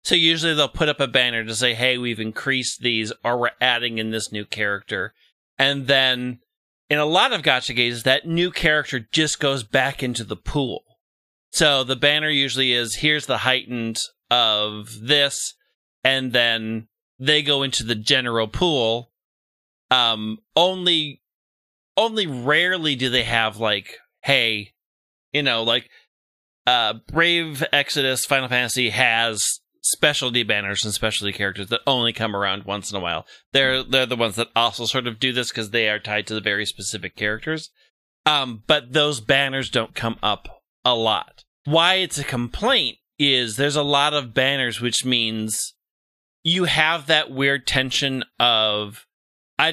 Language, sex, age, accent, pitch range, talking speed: English, male, 30-49, American, 110-145 Hz, 160 wpm